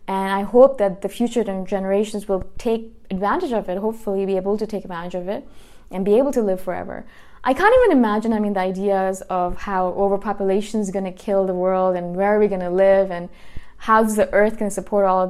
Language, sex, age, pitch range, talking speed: English, female, 20-39, 190-225 Hz, 235 wpm